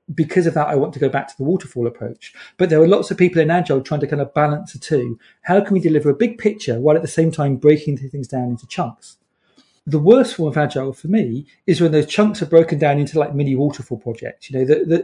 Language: English